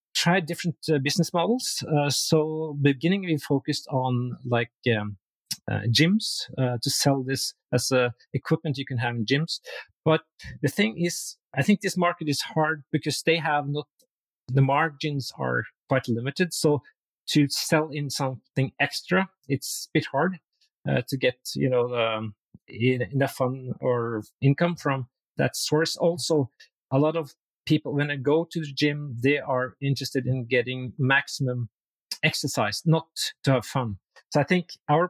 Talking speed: 160 wpm